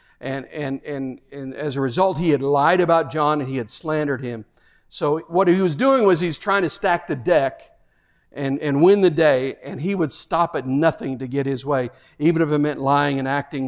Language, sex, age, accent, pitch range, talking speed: English, male, 50-69, American, 130-165 Hz, 225 wpm